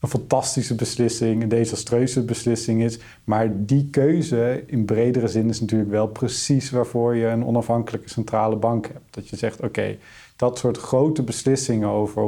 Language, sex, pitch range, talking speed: Dutch, male, 110-130 Hz, 160 wpm